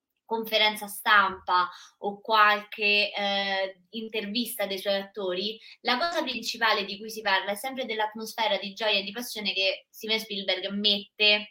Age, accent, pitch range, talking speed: 20-39, native, 190-225 Hz, 145 wpm